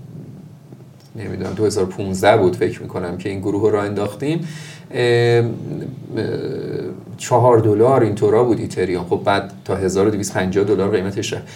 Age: 30-49